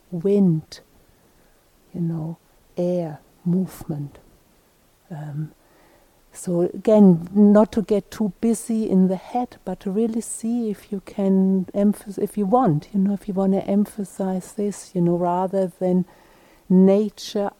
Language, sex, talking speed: English, female, 135 wpm